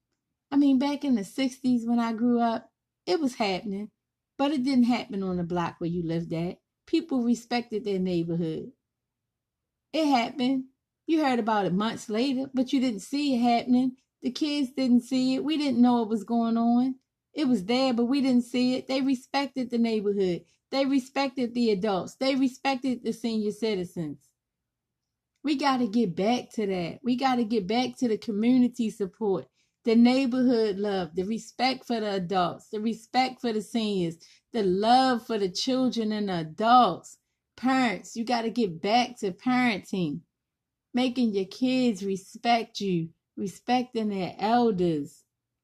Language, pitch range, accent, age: English, 195-255 Hz, American, 30-49